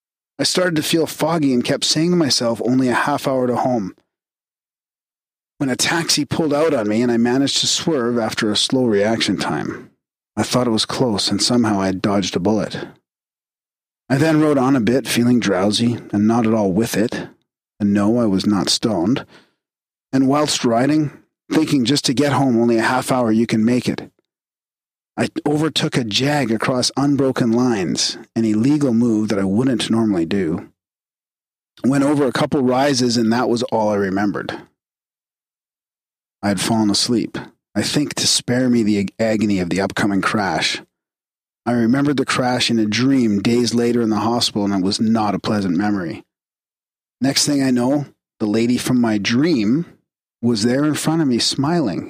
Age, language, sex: 40-59, English, male